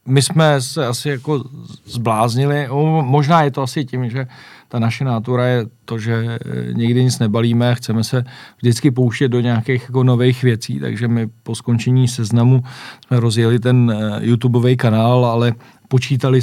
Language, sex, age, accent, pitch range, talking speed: Czech, male, 40-59, native, 120-130 Hz, 160 wpm